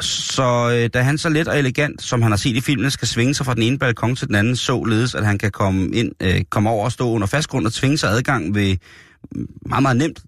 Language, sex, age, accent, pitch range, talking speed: Danish, male, 30-49, native, 100-140 Hz, 255 wpm